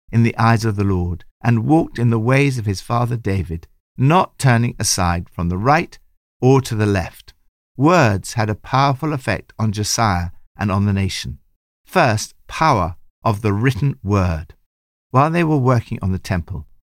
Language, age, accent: English, 60-79, British